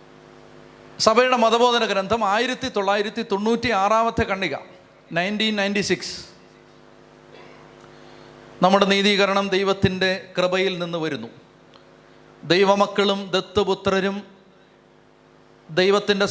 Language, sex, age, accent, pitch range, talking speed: Malayalam, male, 30-49, native, 135-205 Hz, 75 wpm